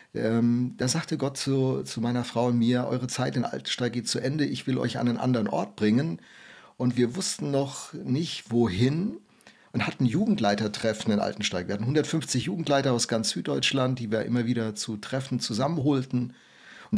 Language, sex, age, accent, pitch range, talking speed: German, male, 50-69, German, 120-140 Hz, 180 wpm